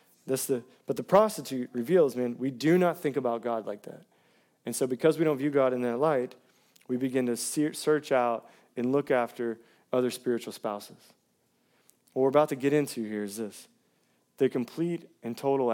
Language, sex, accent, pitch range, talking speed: English, male, American, 130-205 Hz, 185 wpm